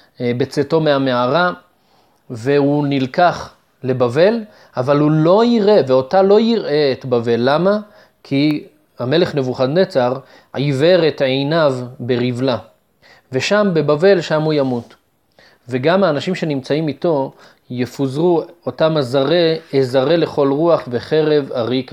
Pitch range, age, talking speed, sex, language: 125-155 Hz, 30-49, 105 wpm, male, Hebrew